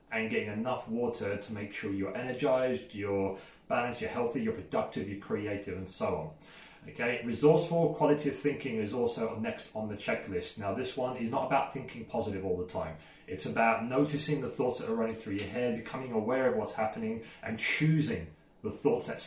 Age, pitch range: 30-49, 110-150 Hz